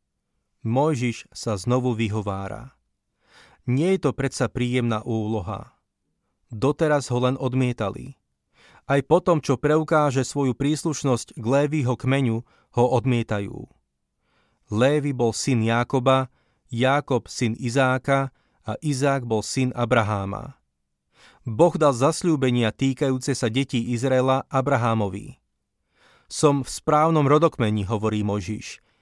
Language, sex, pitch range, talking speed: Slovak, male, 115-140 Hz, 105 wpm